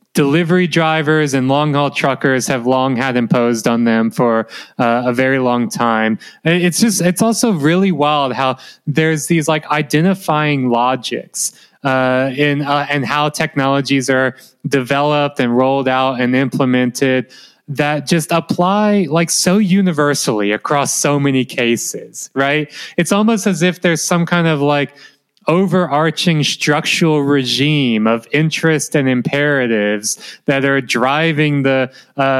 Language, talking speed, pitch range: English, 140 wpm, 130-165 Hz